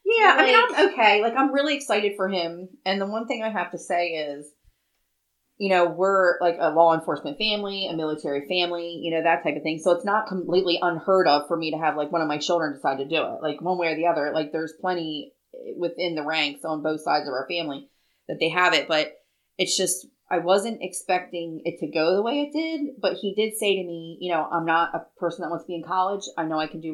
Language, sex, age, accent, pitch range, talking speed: English, female, 30-49, American, 155-190 Hz, 255 wpm